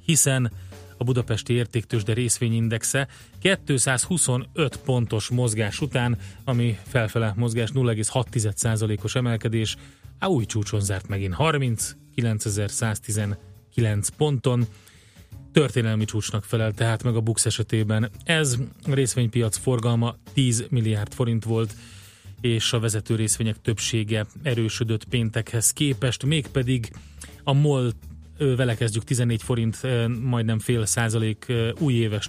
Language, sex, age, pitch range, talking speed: Hungarian, male, 30-49, 110-125 Hz, 105 wpm